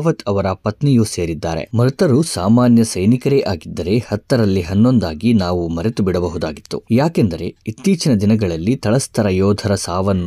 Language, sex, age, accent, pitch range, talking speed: Kannada, male, 20-39, native, 90-115 Hz, 105 wpm